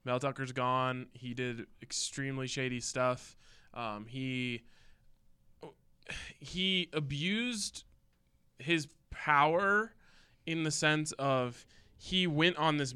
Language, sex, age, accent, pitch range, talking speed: English, male, 20-39, American, 125-155 Hz, 100 wpm